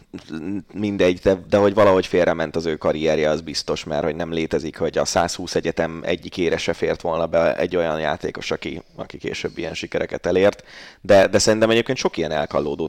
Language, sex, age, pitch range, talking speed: Hungarian, male, 30-49, 85-95 Hz, 190 wpm